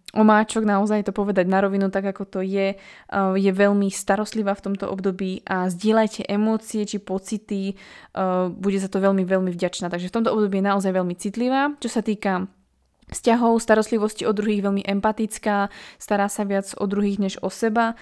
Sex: female